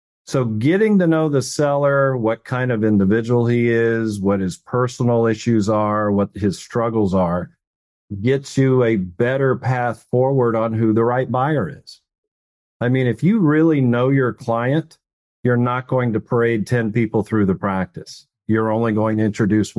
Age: 50-69